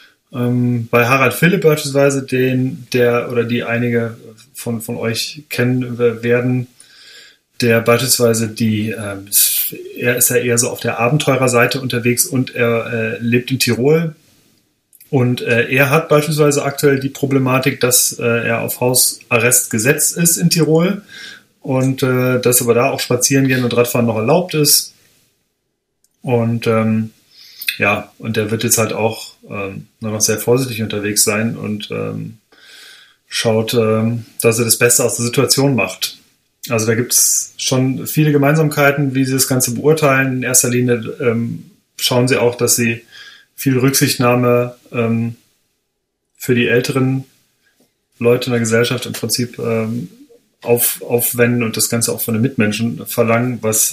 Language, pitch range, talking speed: German, 115-135 Hz, 150 wpm